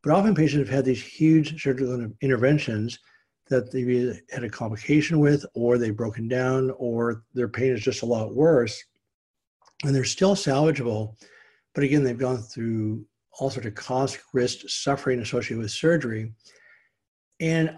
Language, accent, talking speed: English, American, 155 wpm